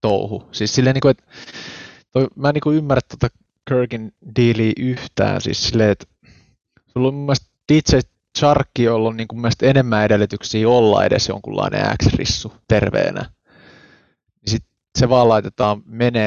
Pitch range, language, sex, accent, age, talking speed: 105-125 Hz, Finnish, male, native, 20-39, 135 wpm